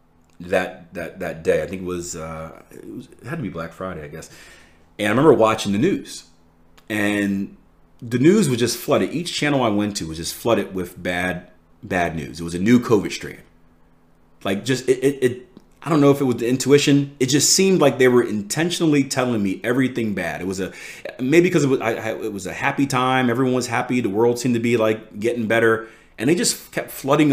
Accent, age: American, 30-49